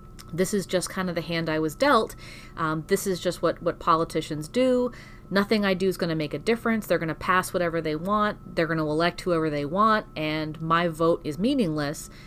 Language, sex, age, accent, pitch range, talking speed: English, female, 30-49, American, 160-205 Hz, 225 wpm